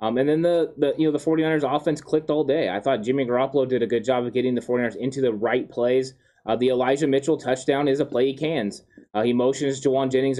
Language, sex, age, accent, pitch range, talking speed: English, male, 20-39, American, 120-140 Hz, 255 wpm